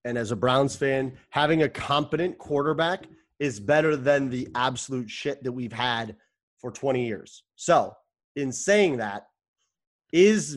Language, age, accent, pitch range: English, 30-49, American, 140-185 Hz